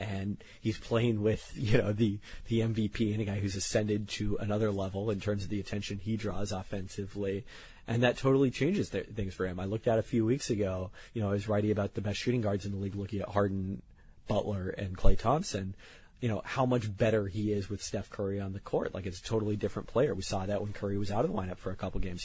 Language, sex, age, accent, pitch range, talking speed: English, male, 30-49, American, 100-115 Hz, 250 wpm